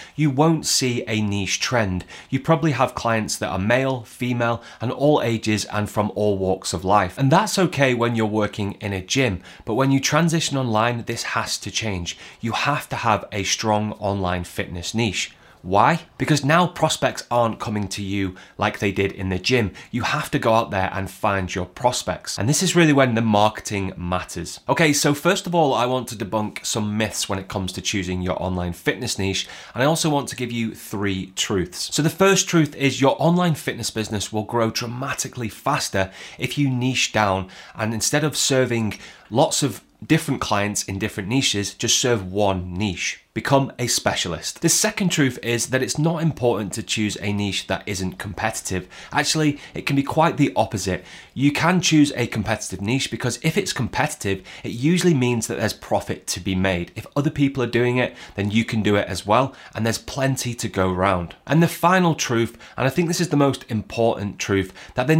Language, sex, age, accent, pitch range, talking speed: English, male, 20-39, British, 100-140 Hz, 205 wpm